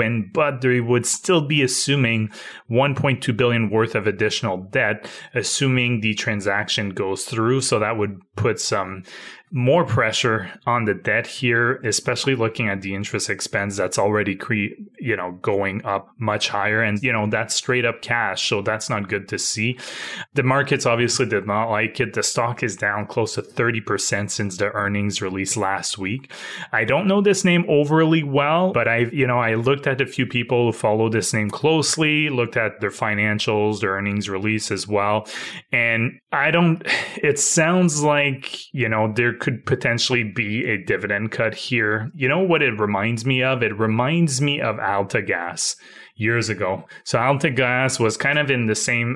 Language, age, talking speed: English, 20-39, 180 wpm